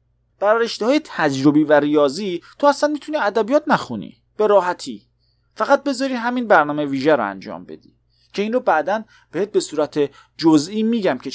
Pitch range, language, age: 130-215 Hz, Persian, 30-49